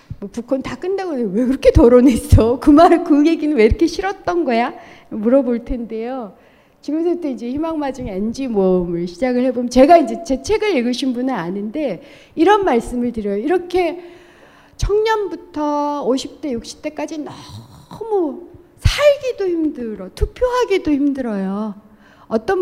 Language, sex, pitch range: Korean, female, 235-355 Hz